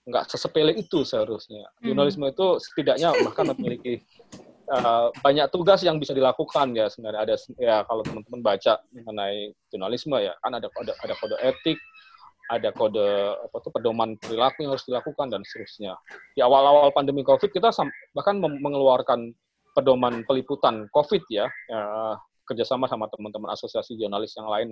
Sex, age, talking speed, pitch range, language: male, 20-39, 150 wpm, 120-160 Hz, Indonesian